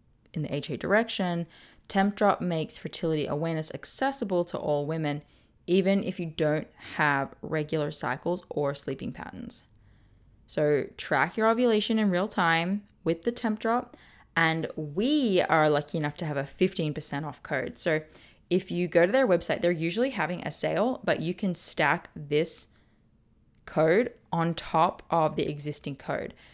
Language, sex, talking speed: English, female, 150 wpm